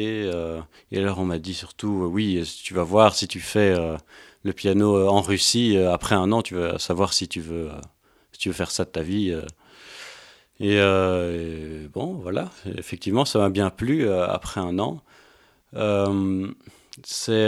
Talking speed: 195 wpm